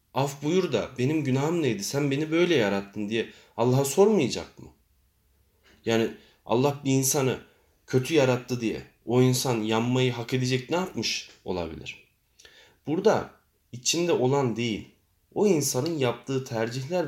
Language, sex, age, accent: Turkish, male, 40-59, native